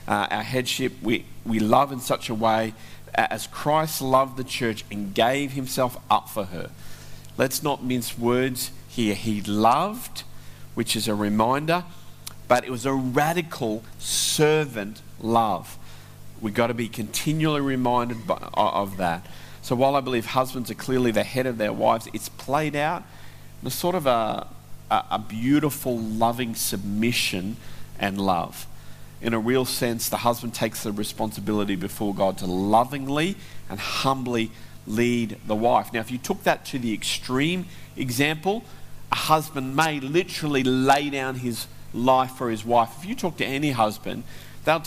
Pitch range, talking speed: 110-135 Hz, 160 wpm